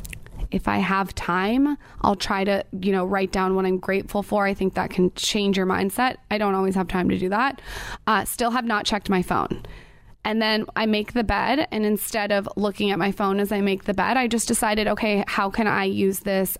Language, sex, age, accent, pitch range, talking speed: English, female, 20-39, American, 190-225 Hz, 230 wpm